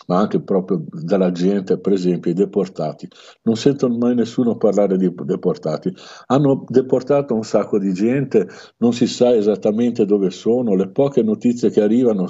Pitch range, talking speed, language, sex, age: 90-110 Hz, 160 wpm, Italian, male, 60-79